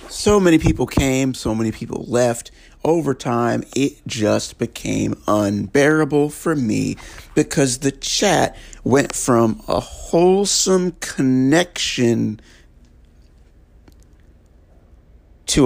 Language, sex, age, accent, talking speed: English, male, 50-69, American, 95 wpm